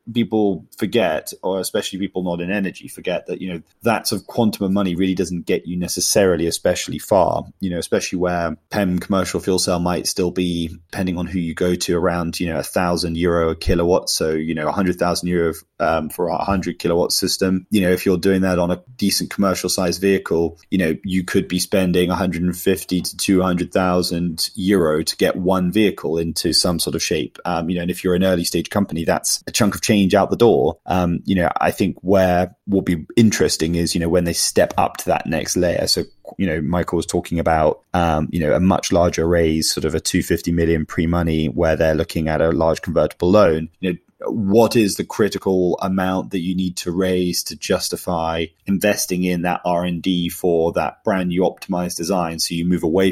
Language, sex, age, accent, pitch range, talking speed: English, male, 20-39, British, 85-95 Hz, 215 wpm